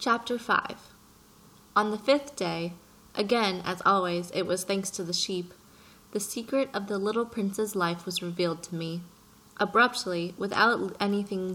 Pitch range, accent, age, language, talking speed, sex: 175-220 Hz, American, 20-39, English, 150 wpm, female